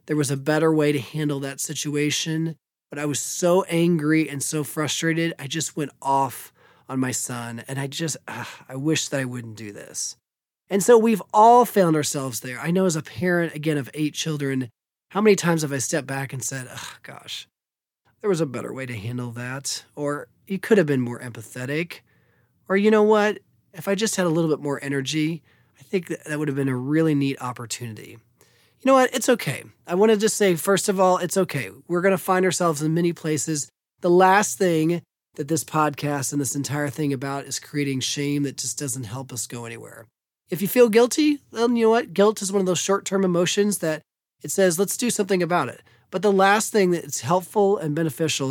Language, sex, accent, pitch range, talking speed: English, male, American, 135-185 Hz, 215 wpm